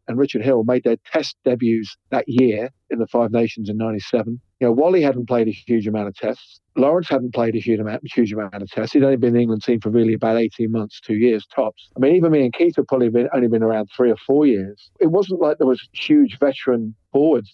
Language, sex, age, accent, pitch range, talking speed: English, male, 40-59, British, 110-130 Hz, 250 wpm